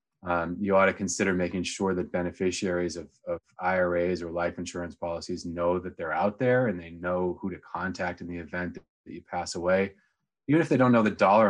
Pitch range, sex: 85-105 Hz, male